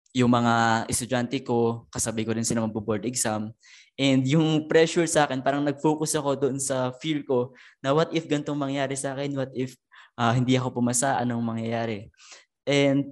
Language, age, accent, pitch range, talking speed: Filipino, 20-39, native, 120-145 Hz, 175 wpm